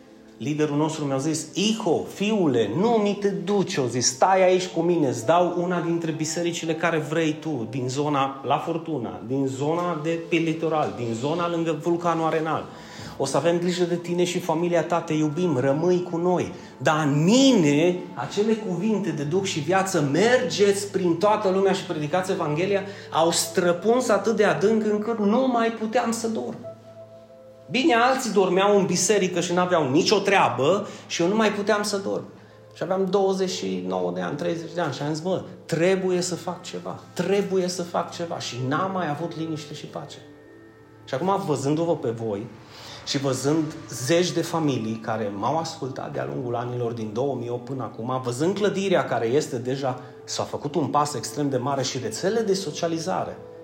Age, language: 30-49, Romanian